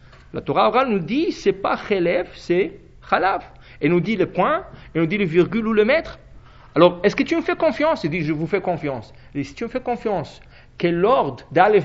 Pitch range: 170-255 Hz